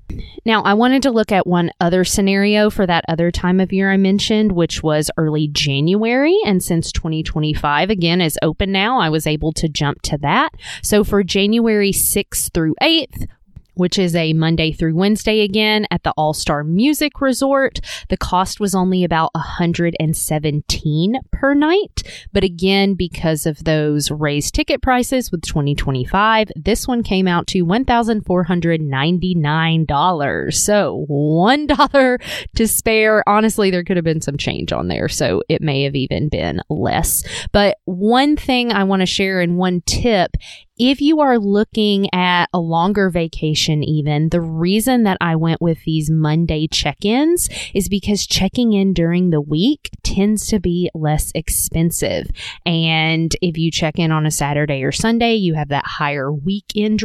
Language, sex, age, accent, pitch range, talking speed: English, female, 20-39, American, 155-210 Hz, 160 wpm